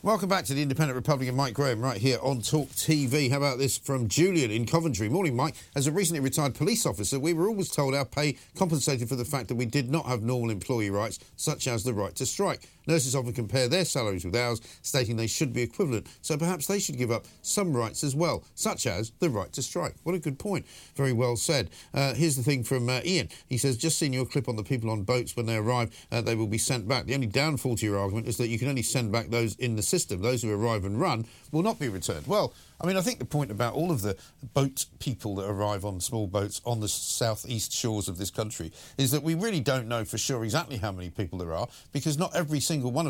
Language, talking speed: English, 255 wpm